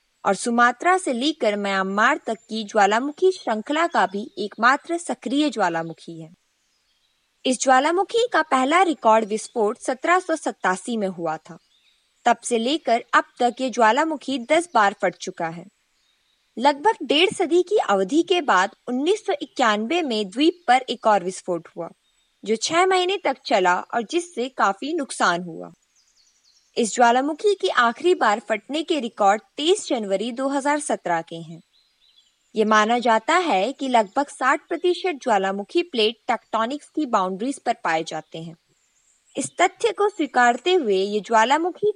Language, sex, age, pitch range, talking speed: Hindi, female, 20-39, 205-310 Hz, 140 wpm